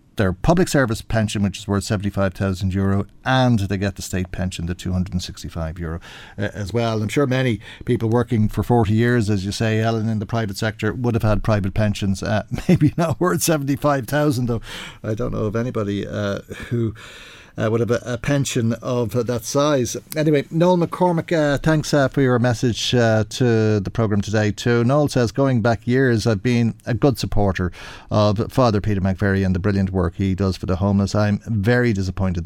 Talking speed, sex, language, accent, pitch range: 195 wpm, male, English, Irish, 100-125 Hz